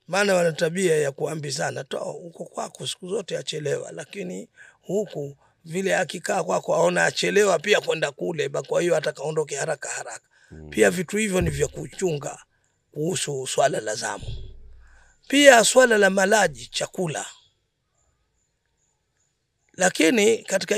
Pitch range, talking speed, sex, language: 140-200 Hz, 135 wpm, male, Swahili